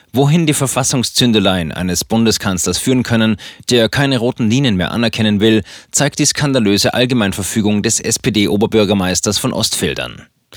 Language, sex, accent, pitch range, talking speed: German, male, German, 100-125 Hz, 125 wpm